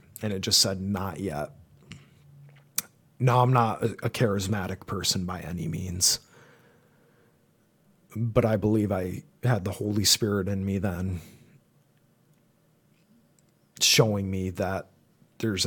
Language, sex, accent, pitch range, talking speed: English, male, American, 95-120 Hz, 115 wpm